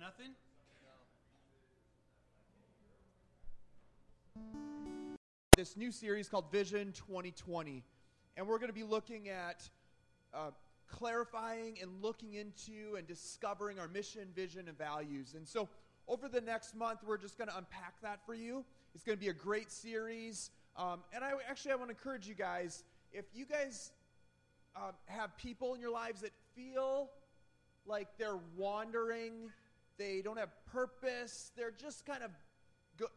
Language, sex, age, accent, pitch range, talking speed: English, male, 30-49, American, 180-230 Hz, 145 wpm